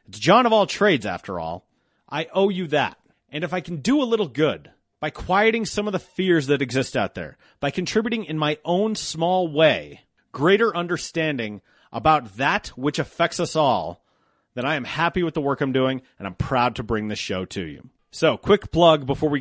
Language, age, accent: English, 30-49, American